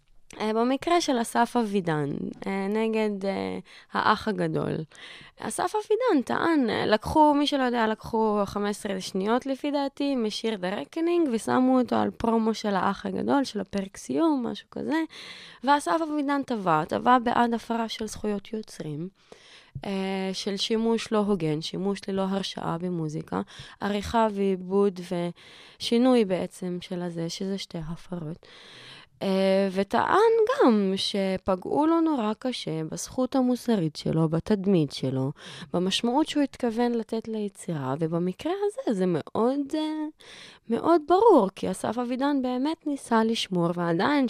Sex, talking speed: female, 120 wpm